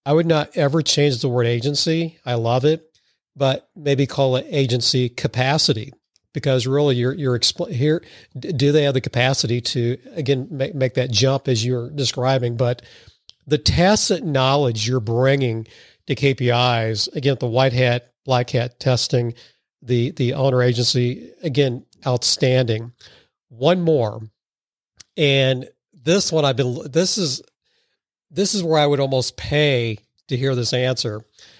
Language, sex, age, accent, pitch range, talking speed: English, male, 50-69, American, 120-145 Hz, 145 wpm